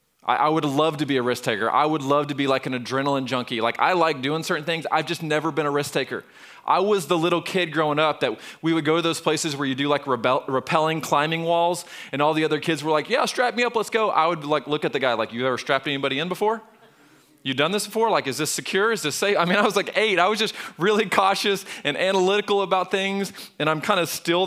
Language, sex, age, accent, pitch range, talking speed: English, male, 20-39, American, 145-195 Hz, 270 wpm